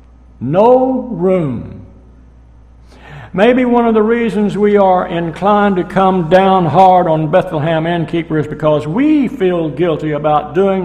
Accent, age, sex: American, 60-79, male